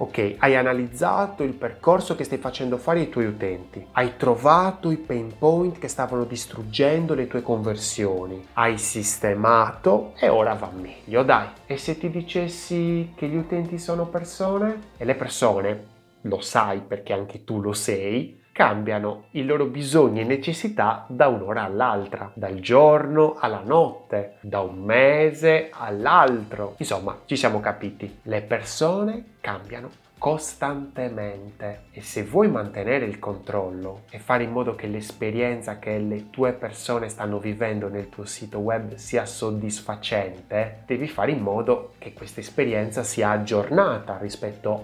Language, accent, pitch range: Italian, native, 105-155 Hz